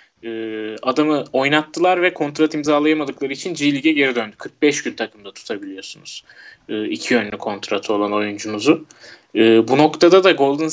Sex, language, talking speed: male, Turkish, 130 wpm